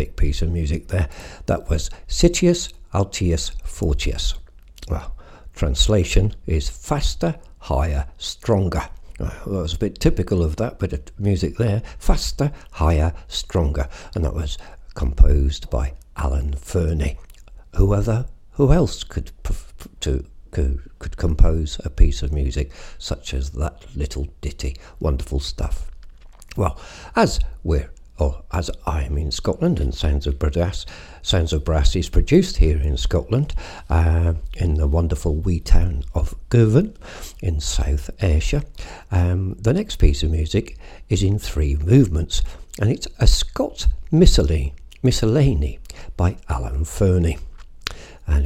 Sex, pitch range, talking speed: male, 70-90 Hz, 135 wpm